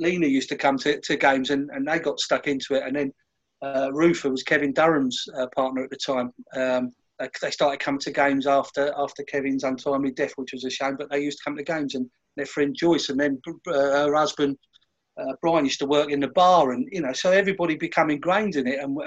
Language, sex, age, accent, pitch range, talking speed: English, male, 40-59, British, 130-160 Hz, 235 wpm